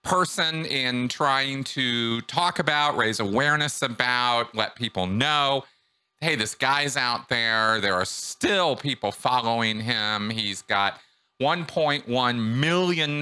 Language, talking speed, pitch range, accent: English, 125 wpm, 100-130 Hz, American